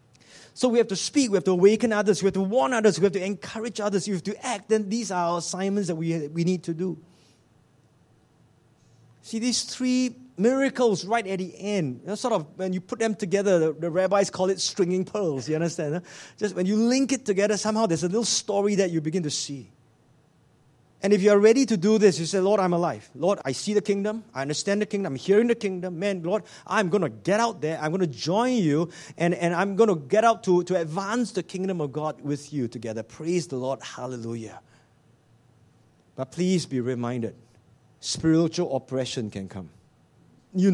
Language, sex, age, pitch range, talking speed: English, male, 20-39, 140-205 Hz, 215 wpm